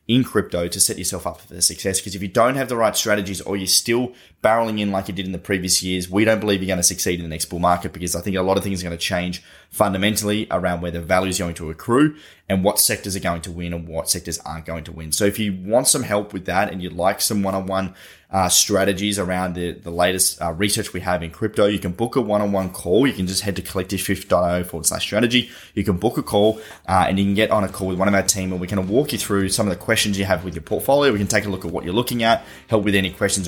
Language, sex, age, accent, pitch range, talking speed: English, male, 10-29, Australian, 90-105 Hz, 290 wpm